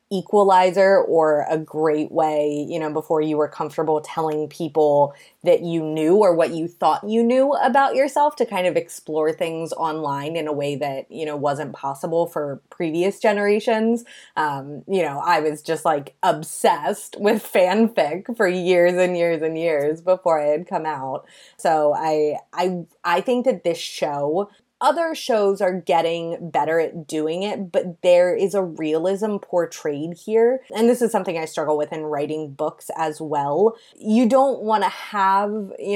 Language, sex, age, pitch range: English, female, 20-39, 155-210 Hz